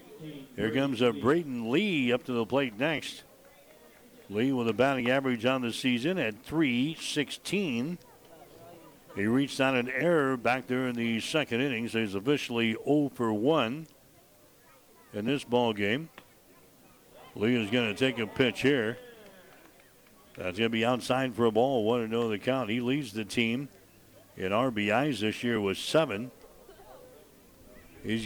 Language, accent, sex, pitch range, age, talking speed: English, American, male, 115-145 Hz, 60-79, 145 wpm